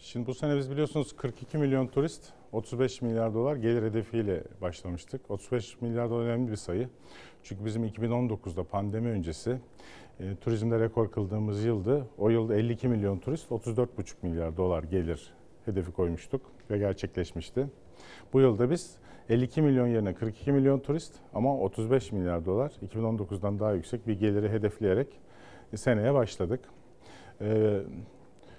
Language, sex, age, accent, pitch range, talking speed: Turkish, male, 40-59, native, 100-125 Hz, 140 wpm